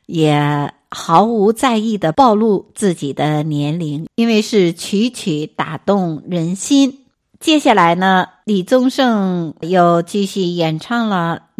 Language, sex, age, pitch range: Chinese, female, 60-79, 160-225 Hz